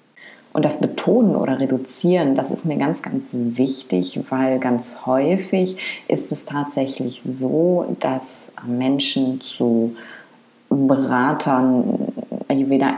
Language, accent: German, German